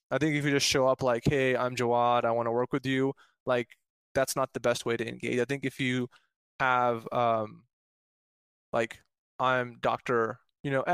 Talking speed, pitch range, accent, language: 195 wpm, 120-140 Hz, American, English